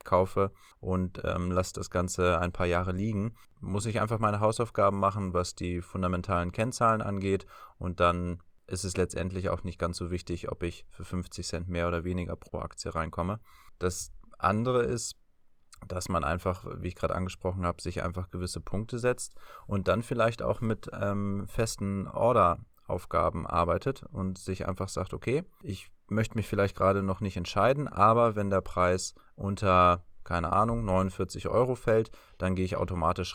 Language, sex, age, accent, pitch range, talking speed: German, male, 20-39, German, 90-105 Hz, 170 wpm